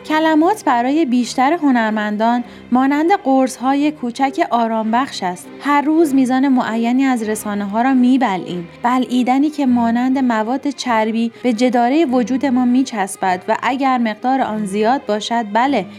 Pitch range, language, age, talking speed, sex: 225-280 Hz, Persian, 30-49, 125 wpm, female